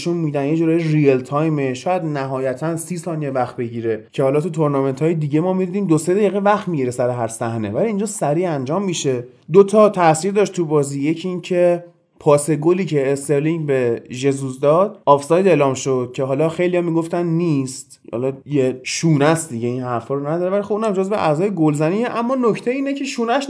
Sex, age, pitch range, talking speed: male, 30-49, 135-195 Hz, 185 wpm